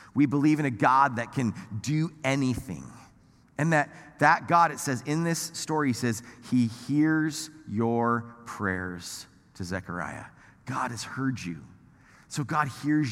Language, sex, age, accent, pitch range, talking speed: English, male, 30-49, American, 105-135 Hz, 145 wpm